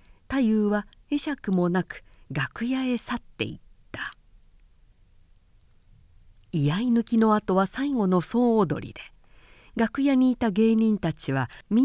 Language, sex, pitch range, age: Japanese, female, 135-220 Hz, 50-69